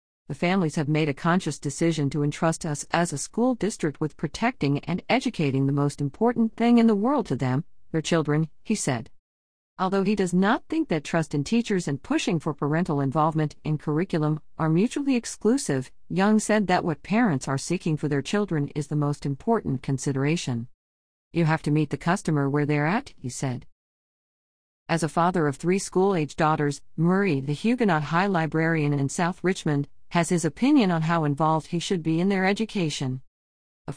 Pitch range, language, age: 140-185 Hz, English, 50-69